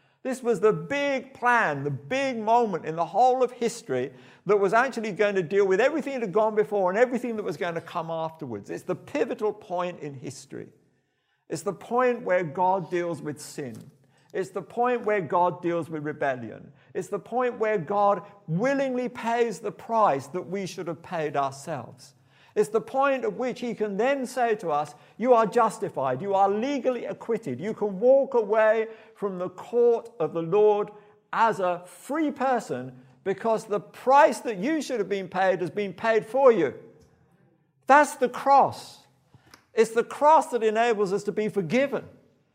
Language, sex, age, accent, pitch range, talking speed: English, male, 50-69, British, 170-240 Hz, 180 wpm